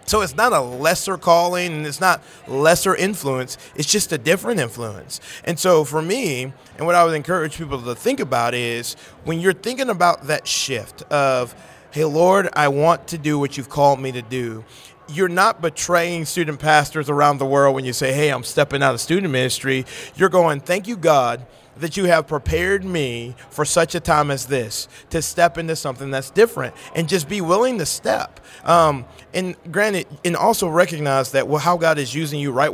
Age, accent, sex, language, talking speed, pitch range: 30-49, American, male, English, 200 wpm, 140-175 Hz